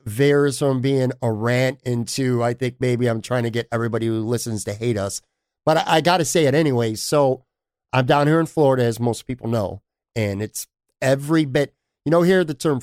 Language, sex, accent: English, male, American